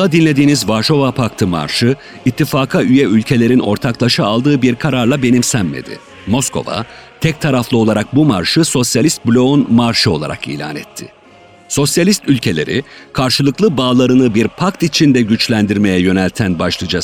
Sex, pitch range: male, 105-140 Hz